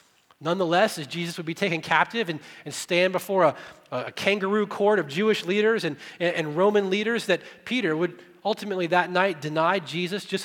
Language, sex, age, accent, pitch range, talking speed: English, male, 30-49, American, 160-205 Hz, 185 wpm